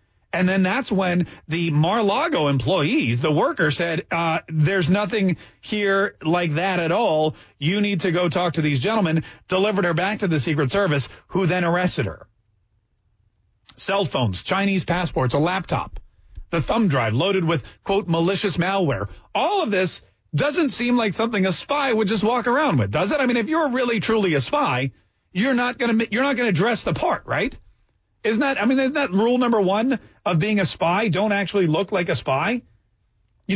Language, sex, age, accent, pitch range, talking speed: English, male, 40-59, American, 145-210 Hz, 185 wpm